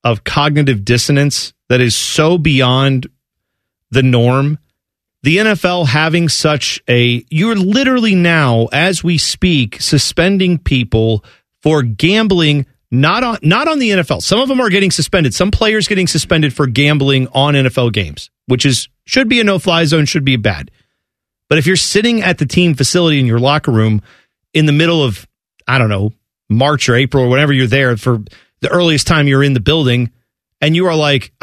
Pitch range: 125-180 Hz